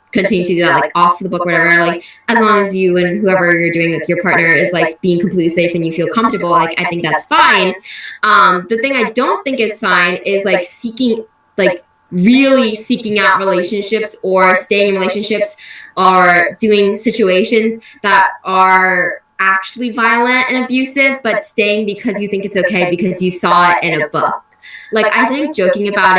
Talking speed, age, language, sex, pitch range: 190 wpm, 10-29, English, female, 180-225 Hz